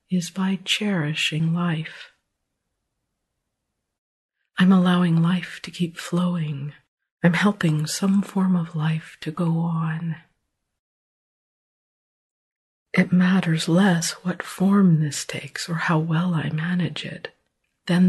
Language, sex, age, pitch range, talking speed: English, female, 50-69, 155-180 Hz, 110 wpm